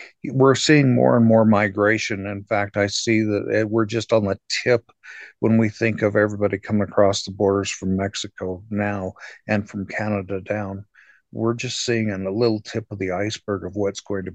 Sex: male